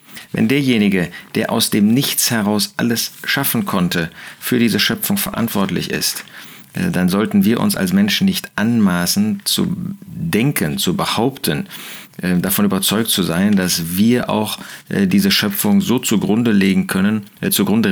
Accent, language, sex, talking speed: German, German, male, 135 wpm